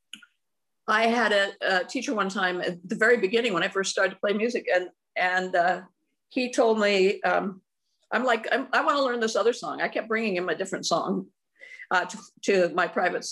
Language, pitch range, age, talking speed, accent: English, 190-255 Hz, 50-69, 210 wpm, American